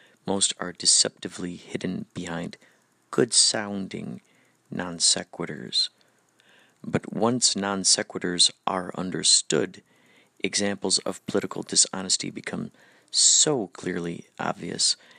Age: 50-69